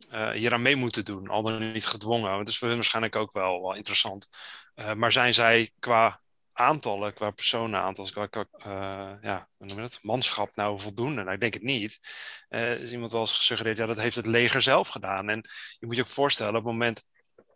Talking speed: 220 wpm